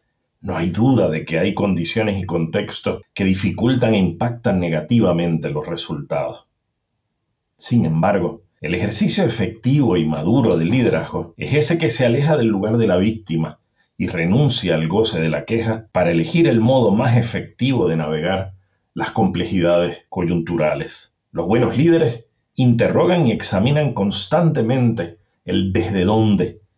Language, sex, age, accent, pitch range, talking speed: English, male, 40-59, Argentinian, 90-115 Hz, 140 wpm